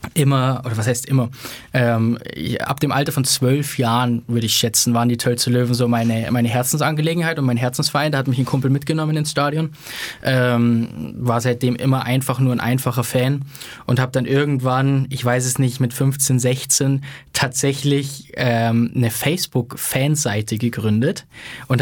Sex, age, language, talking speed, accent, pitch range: male, 20-39, German, 170 wpm, German, 120-140 Hz